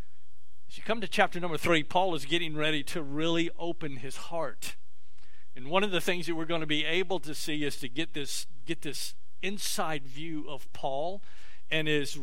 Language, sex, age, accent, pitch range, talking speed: English, male, 50-69, American, 130-175 Hz, 200 wpm